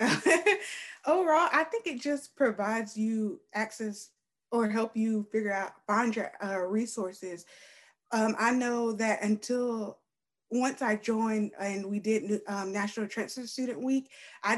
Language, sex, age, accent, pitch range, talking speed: English, female, 20-39, American, 200-230 Hz, 140 wpm